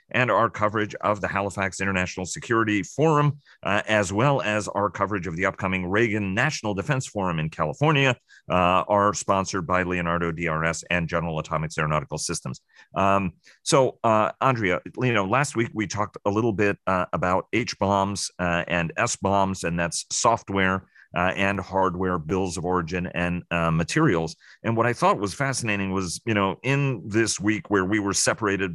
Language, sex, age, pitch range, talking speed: English, male, 40-59, 90-105 Hz, 170 wpm